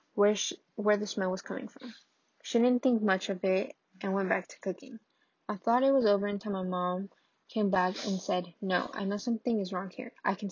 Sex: female